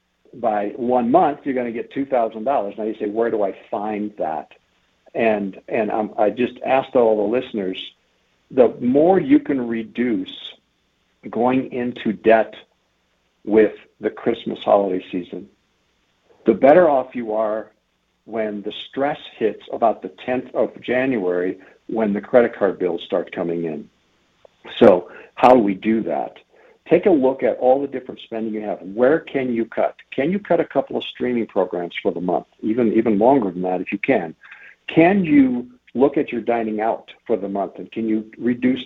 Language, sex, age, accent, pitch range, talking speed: English, male, 60-79, American, 105-130 Hz, 175 wpm